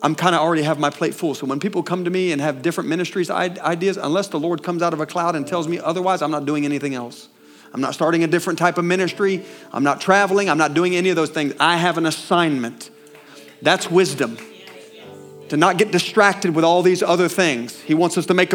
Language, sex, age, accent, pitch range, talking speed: English, male, 40-59, American, 165-205 Hz, 240 wpm